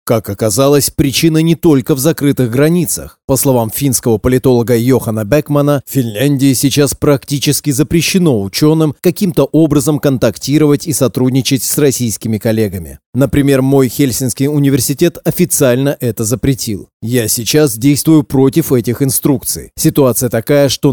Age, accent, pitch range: 30-49, native, 120-150 Hz